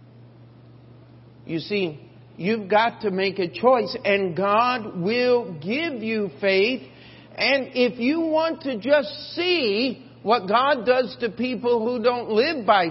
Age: 50-69